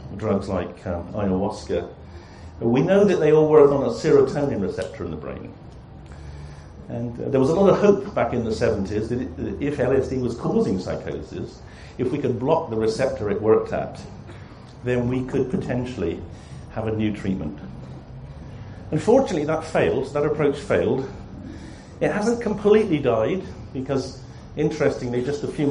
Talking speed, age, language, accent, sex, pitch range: 155 wpm, 50-69, English, British, male, 95-135 Hz